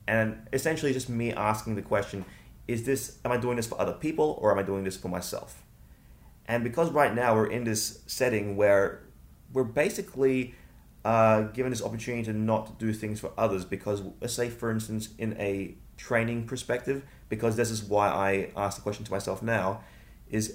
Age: 20-39